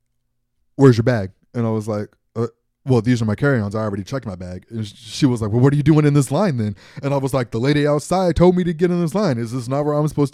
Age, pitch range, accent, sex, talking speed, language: 20-39, 110-150 Hz, American, male, 295 wpm, English